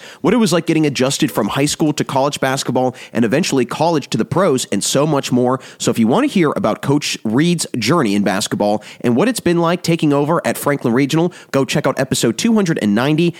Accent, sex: American, male